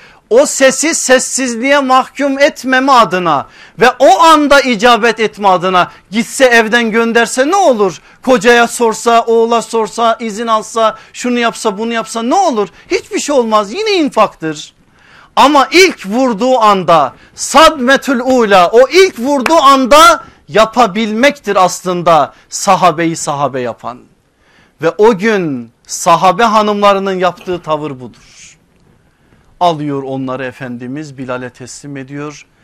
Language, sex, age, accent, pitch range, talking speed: Turkish, male, 50-69, native, 140-235 Hz, 115 wpm